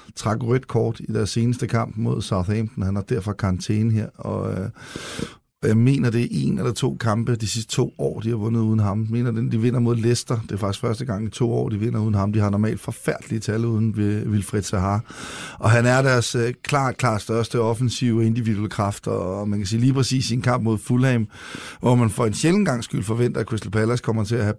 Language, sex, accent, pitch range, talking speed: Danish, male, native, 110-130 Hz, 235 wpm